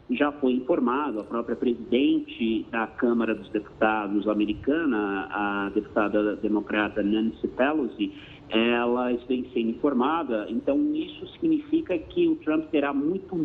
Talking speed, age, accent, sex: 125 wpm, 50-69, Brazilian, male